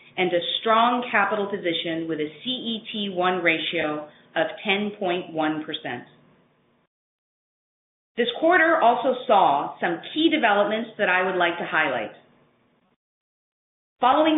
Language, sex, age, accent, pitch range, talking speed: English, female, 30-49, American, 170-225 Hz, 105 wpm